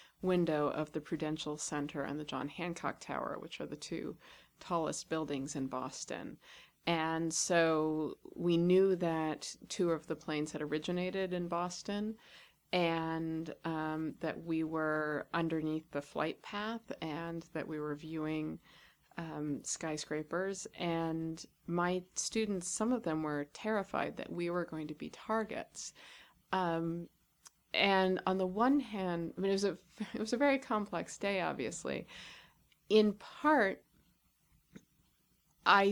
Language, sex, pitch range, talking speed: English, female, 155-185 Hz, 135 wpm